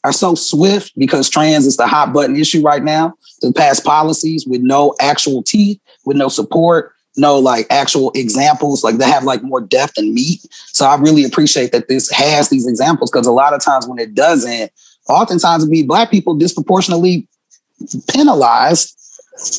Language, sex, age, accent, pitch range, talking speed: English, male, 30-49, American, 140-185 Hz, 180 wpm